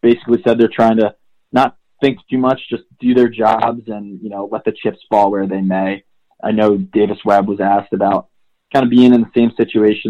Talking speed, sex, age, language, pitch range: 220 wpm, male, 20-39, English, 100-115 Hz